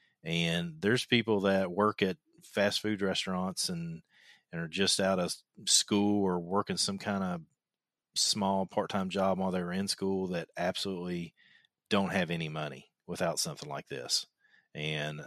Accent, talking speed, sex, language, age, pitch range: American, 155 wpm, male, English, 40-59, 85-110 Hz